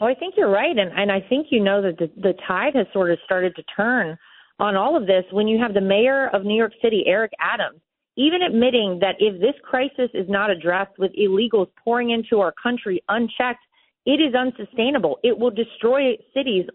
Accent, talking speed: American, 210 wpm